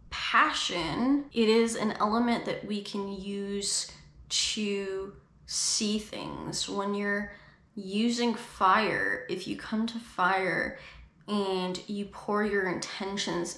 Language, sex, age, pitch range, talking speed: English, female, 10-29, 195-230 Hz, 115 wpm